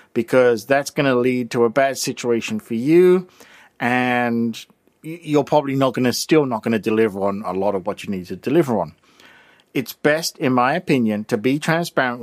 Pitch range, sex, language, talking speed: 115-155 Hz, male, English, 195 wpm